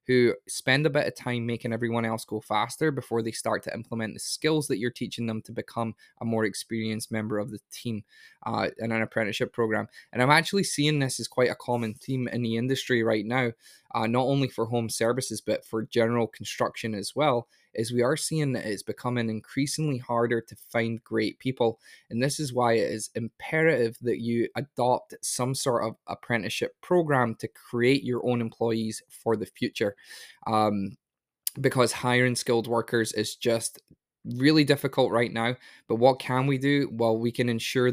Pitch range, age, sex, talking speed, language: 110-130 Hz, 20-39, male, 190 wpm, English